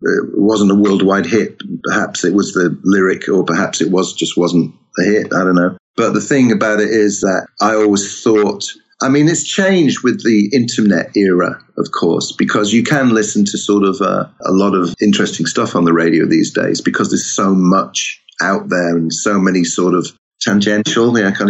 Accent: British